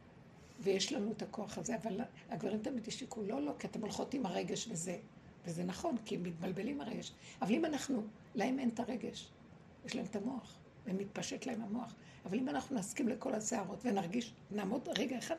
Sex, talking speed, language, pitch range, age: female, 185 wpm, Hebrew, 210-260 Hz, 60-79